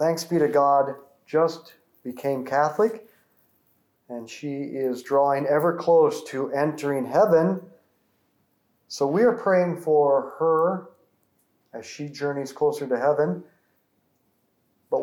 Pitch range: 145-220 Hz